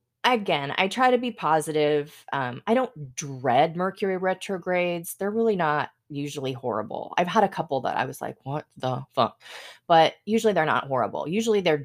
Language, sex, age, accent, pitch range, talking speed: English, female, 20-39, American, 135-180 Hz, 175 wpm